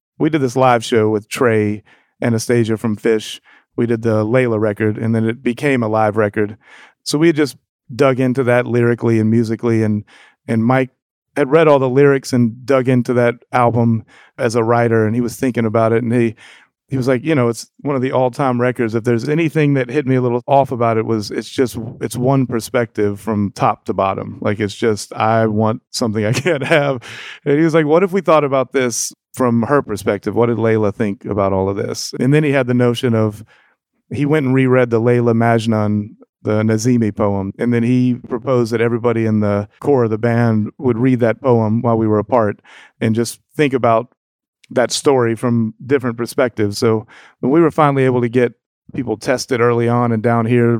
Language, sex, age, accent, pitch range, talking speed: English, male, 30-49, American, 110-130 Hz, 210 wpm